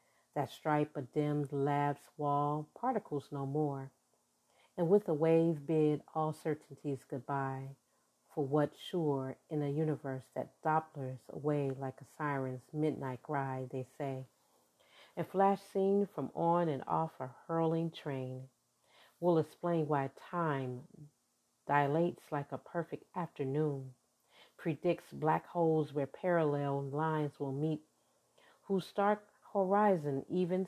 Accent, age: American, 40-59